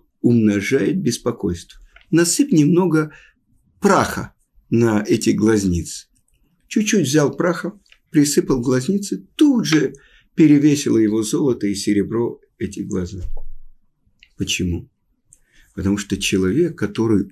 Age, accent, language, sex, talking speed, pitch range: 50-69, native, Russian, male, 95 wpm, 95-145 Hz